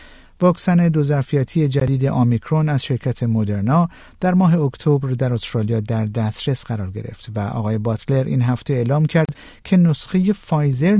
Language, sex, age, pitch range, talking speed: Persian, male, 50-69, 115-160 Hz, 140 wpm